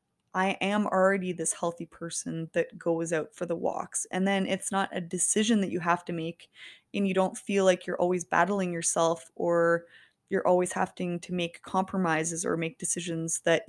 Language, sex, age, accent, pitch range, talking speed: English, female, 20-39, American, 175-215 Hz, 190 wpm